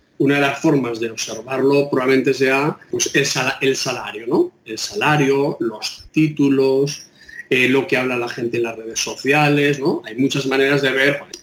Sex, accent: male, Spanish